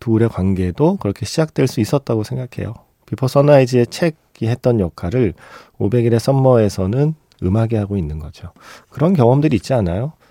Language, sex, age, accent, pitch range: Korean, male, 40-59, native, 100-135 Hz